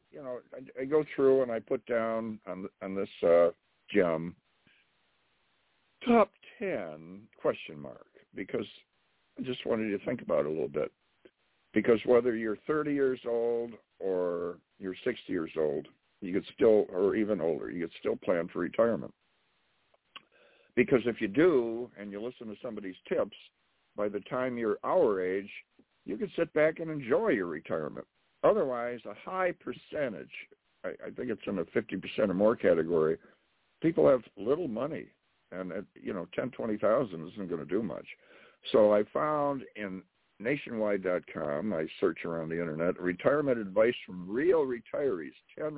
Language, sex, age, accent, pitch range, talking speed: English, male, 60-79, American, 95-135 Hz, 160 wpm